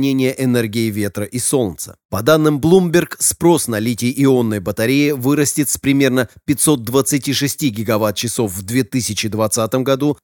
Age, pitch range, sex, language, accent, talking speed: 30-49, 115-145 Hz, male, Russian, native, 110 wpm